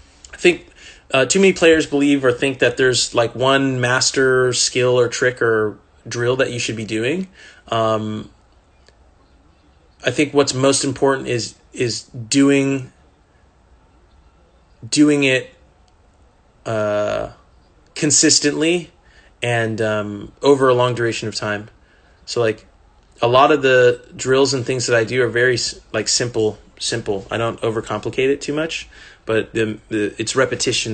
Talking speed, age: 140 wpm, 20-39